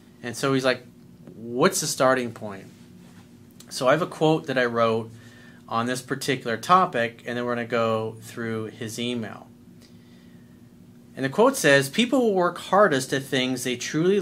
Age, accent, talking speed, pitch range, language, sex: 40-59, American, 170 wpm, 115-155 Hz, English, male